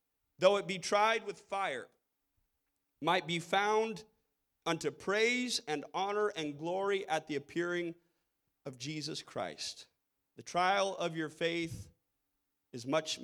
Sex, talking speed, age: male, 125 wpm, 30-49